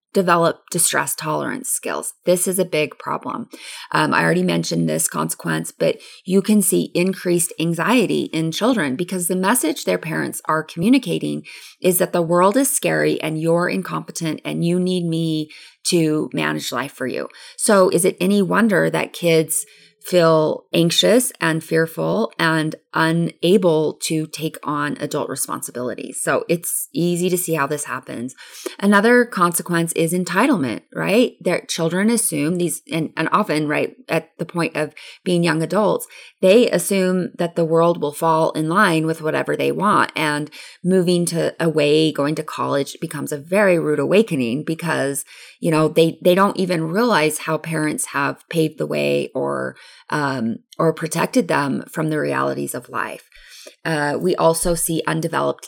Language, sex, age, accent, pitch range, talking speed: English, female, 20-39, American, 155-185 Hz, 160 wpm